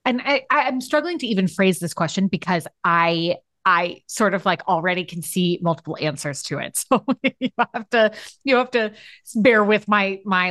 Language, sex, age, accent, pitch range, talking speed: English, female, 30-49, American, 170-255 Hz, 190 wpm